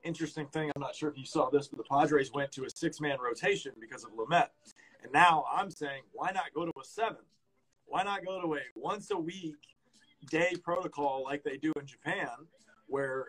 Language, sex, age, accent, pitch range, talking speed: English, male, 30-49, American, 145-175 Hz, 205 wpm